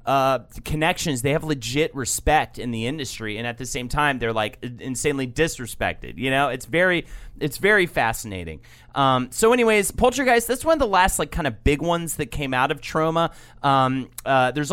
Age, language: 30-49, English